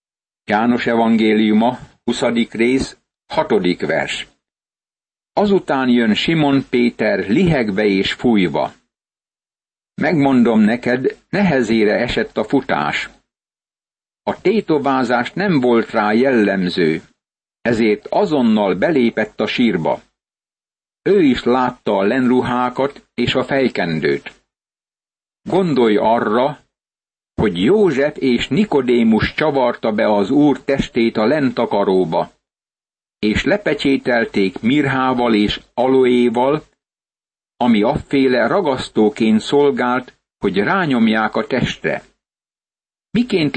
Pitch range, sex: 115-140 Hz, male